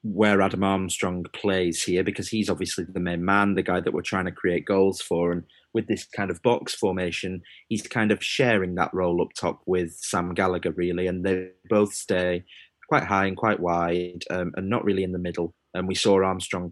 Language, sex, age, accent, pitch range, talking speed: English, male, 30-49, British, 90-105 Hz, 210 wpm